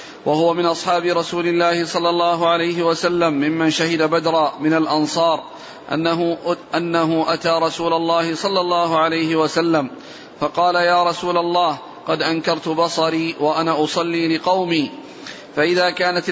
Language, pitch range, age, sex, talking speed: Arabic, 160-175 Hz, 40-59, male, 130 wpm